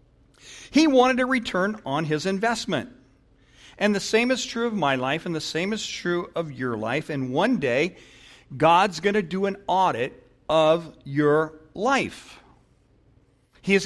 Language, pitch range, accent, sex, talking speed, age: English, 125-180 Hz, American, male, 155 wpm, 50-69